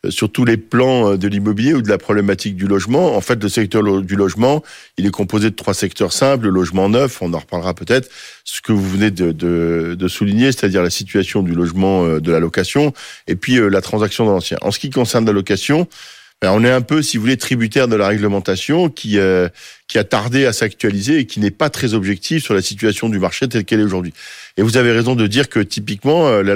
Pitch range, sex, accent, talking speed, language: 100-125 Hz, male, French, 230 wpm, French